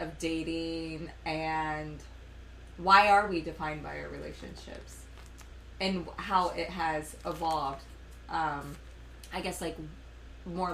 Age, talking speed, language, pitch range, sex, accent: 20-39, 110 wpm, English, 155-205 Hz, female, American